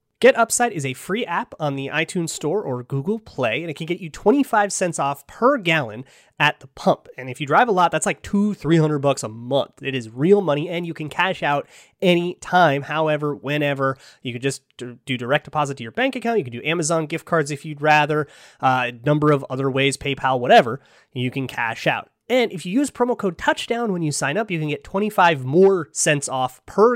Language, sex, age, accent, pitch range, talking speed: English, male, 30-49, American, 135-185 Hz, 225 wpm